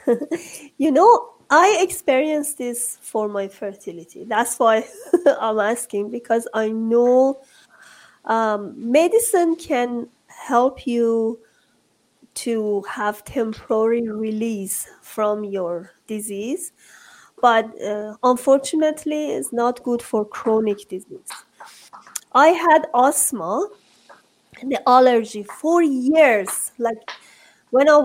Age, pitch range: 30-49, 220-300 Hz